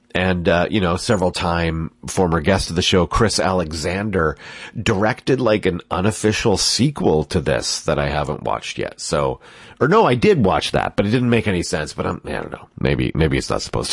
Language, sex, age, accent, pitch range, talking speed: English, male, 40-59, American, 85-110 Hz, 220 wpm